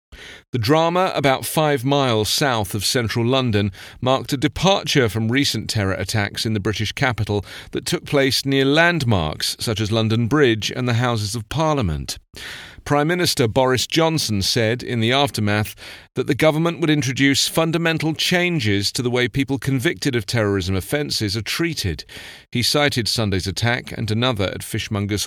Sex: male